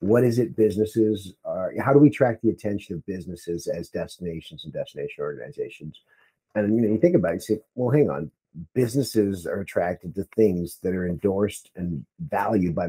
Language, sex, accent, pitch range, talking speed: English, male, American, 100-120 Hz, 185 wpm